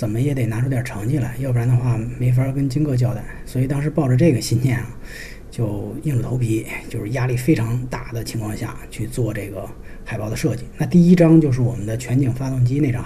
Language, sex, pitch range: Chinese, male, 115-140 Hz